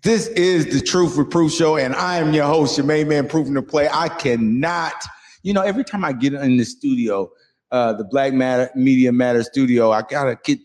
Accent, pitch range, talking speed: American, 125-150 Hz, 215 wpm